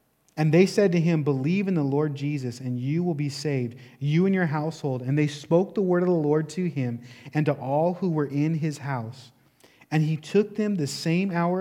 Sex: male